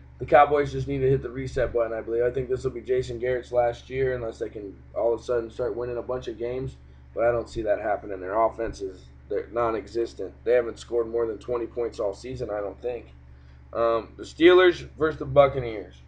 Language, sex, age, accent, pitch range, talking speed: English, male, 20-39, American, 115-150 Hz, 230 wpm